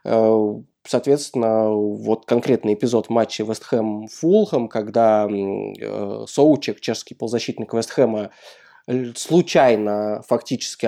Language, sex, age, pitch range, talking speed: Russian, male, 20-39, 110-140 Hz, 85 wpm